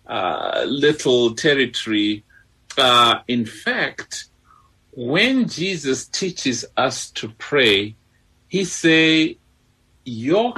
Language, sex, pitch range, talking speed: English, male, 110-160 Hz, 85 wpm